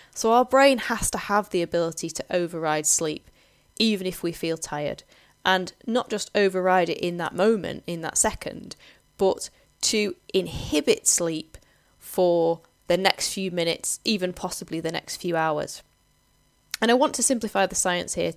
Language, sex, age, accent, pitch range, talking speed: English, female, 10-29, British, 165-200 Hz, 165 wpm